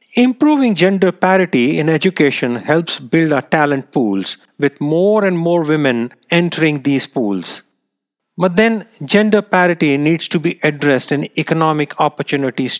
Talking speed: 135 wpm